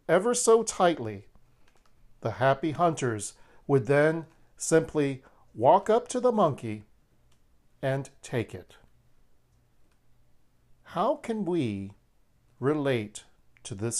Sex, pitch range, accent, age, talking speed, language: male, 120-195 Hz, American, 50-69, 100 wpm, English